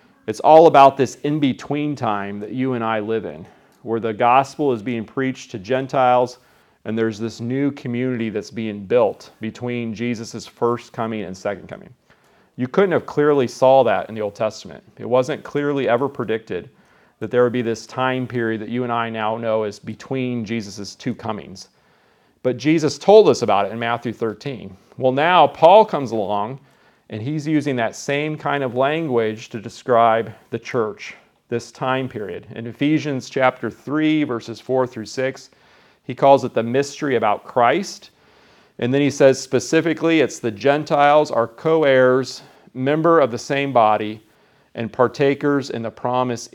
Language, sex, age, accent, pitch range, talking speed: English, male, 40-59, American, 115-140 Hz, 170 wpm